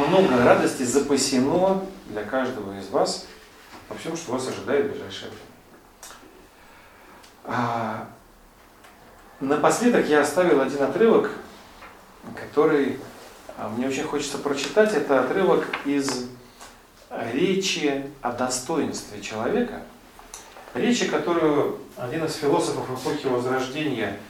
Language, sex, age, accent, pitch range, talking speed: Russian, male, 40-59, native, 120-155 Hz, 100 wpm